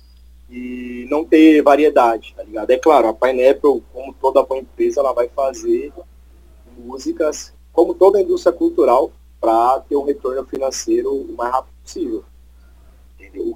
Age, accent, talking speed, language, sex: 20-39, Brazilian, 140 wpm, Portuguese, male